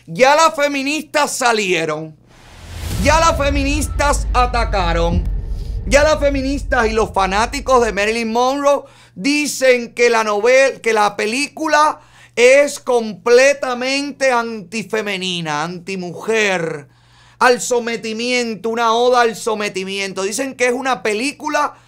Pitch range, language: 165-265 Hz, Spanish